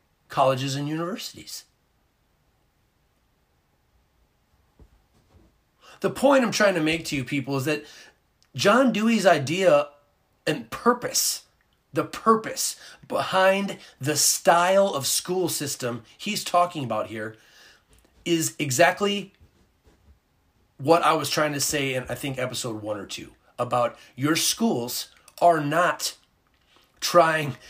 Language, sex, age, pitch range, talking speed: English, male, 30-49, 125-170 Hz, 115 wpm